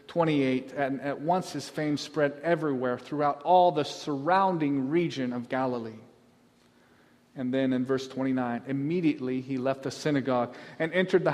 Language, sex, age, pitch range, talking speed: English, male, 40-59, 140-190 Hz, 150 wpm